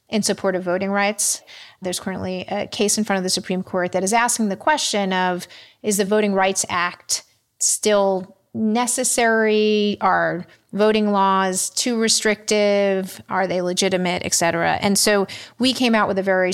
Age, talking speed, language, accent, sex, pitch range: 30-49, 165 wpm, English, American, female, 185-220 Hz